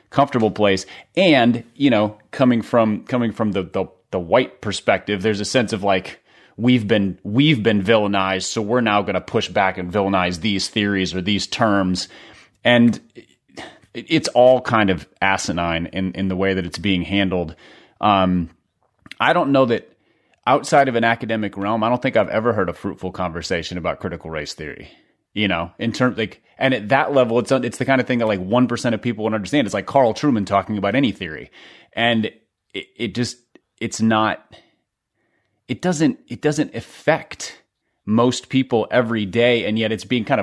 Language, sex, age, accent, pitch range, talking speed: English, male, 30-49, American, 95-120 Hz, 185 wpm